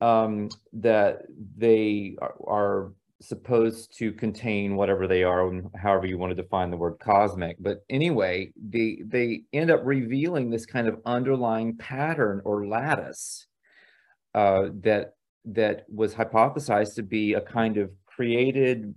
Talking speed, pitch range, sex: 135 wpm, 100-115 Hz, male